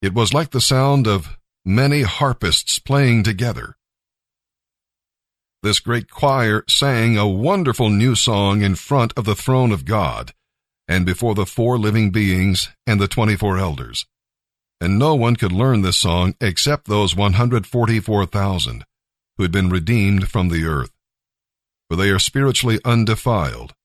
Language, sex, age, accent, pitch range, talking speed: English, male, 50-69, American, 100-120 Hz, 150 wpm